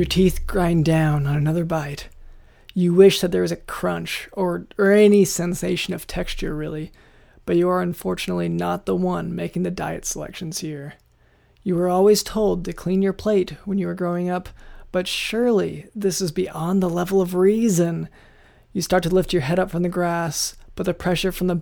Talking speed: 195 wpm